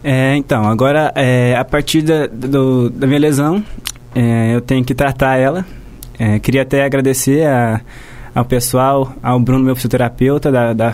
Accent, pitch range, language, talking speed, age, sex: Brazilian, 120-140 Hz, Portuguese, 165 wpm, 20-39, male